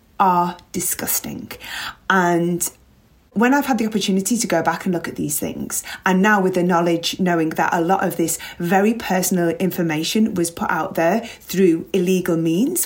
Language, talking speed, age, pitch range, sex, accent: English, 175 wpm, 30-49, 175-225 Hz, female, British